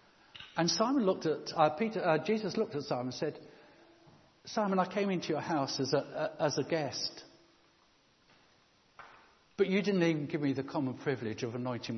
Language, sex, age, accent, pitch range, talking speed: English, male, 60-79, British, 125-170 Hz, 155 wpm